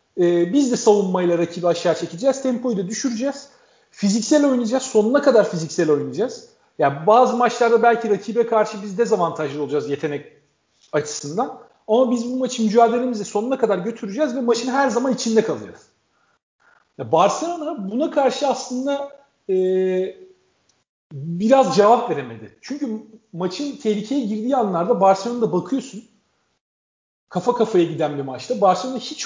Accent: native